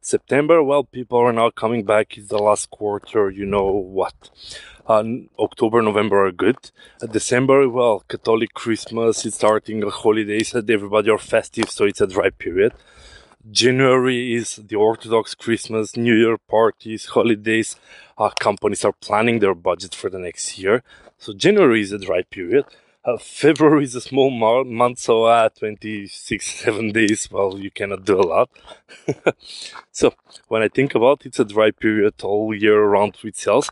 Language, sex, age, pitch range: English, male, 20-39, 110-130 Hz